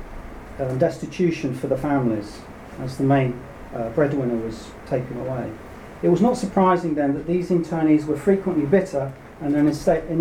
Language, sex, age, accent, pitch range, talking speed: English, male, 40-59, British, 135-170 Hz, 170 wpm